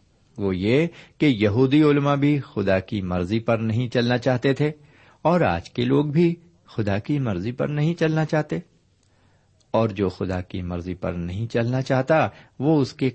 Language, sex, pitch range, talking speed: Urdu, male, 95-135 Hz, 175 wpm